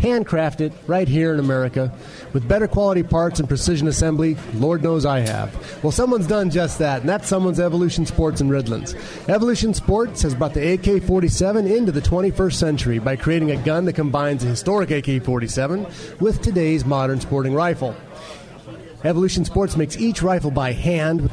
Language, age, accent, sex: English, 30-49, American, male